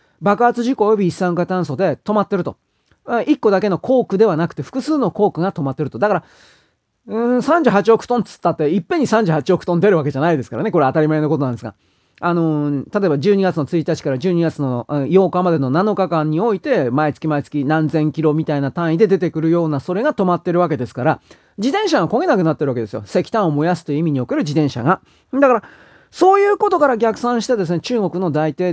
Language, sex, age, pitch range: Japanese, male, 40-59, 155-240 Hz